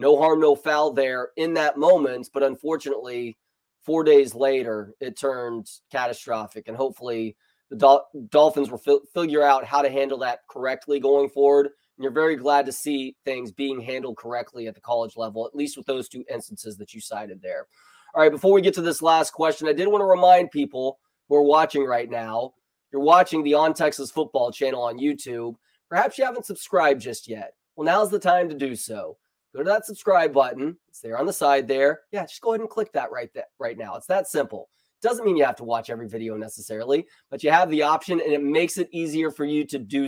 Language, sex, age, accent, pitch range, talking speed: English, male, 20-39, American, 125-155 Hz, 215 wpm